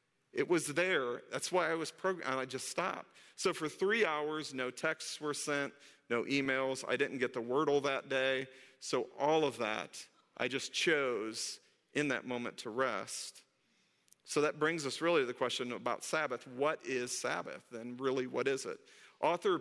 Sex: male